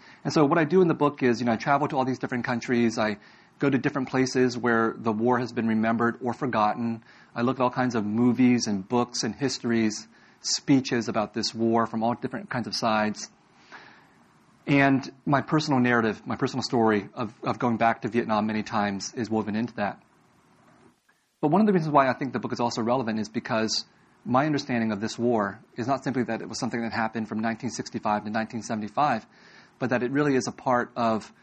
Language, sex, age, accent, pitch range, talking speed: English, male, 30-49, American, 115-130 Hz, 215 wpm